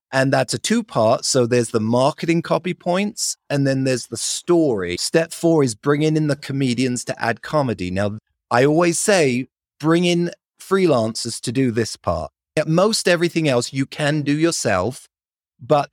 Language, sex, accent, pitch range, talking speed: English, male, British, 120-155 Hz, 175 wpm